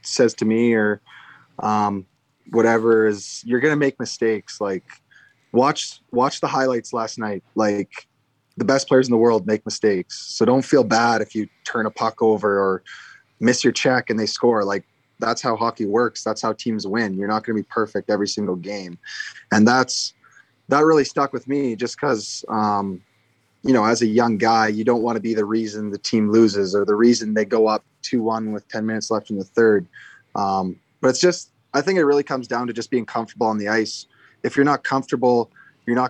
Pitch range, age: 110-120 Hz, 20-39